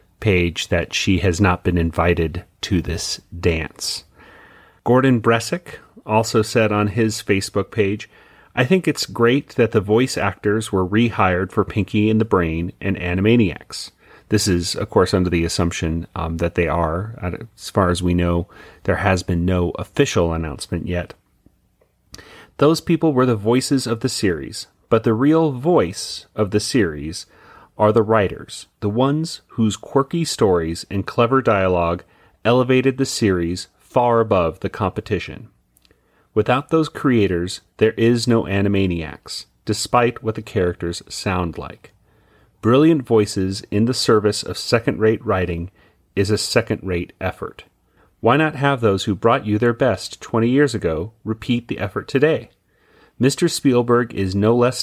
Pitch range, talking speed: 90-120 Hz, 150 wpm